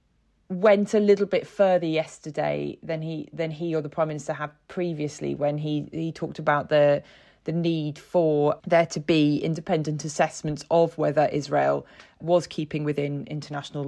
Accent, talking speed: British, 160 wpm